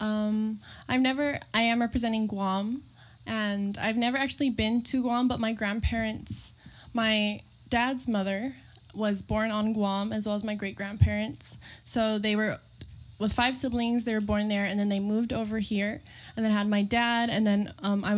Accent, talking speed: American, 180 wpm